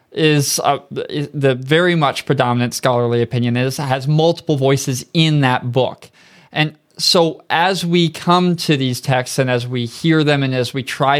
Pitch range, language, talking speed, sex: 125-160 Hz, English, 175 wpm, male